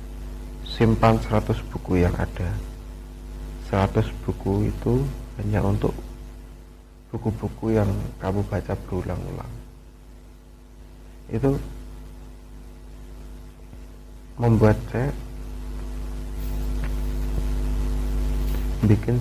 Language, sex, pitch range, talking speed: Indonesian, male, 85-115 Hz, 60 wpm